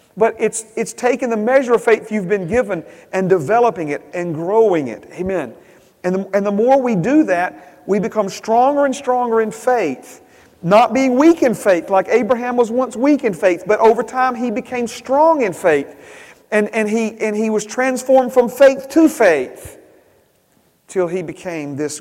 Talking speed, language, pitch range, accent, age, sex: 185 wpm, English, 135-215 Hz, American, 40-59, male